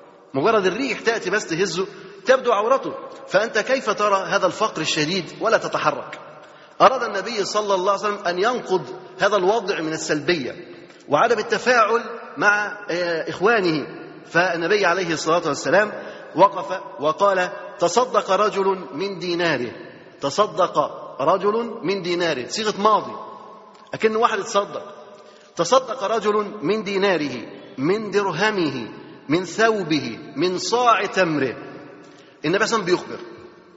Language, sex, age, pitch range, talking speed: Arabic, male, 30-49, 175-215 Hz, 115 wpm